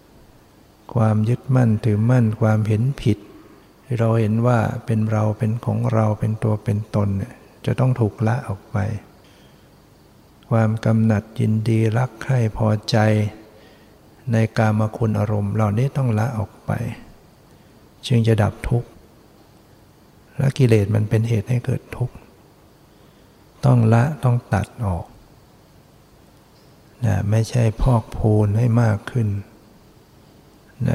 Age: 60-79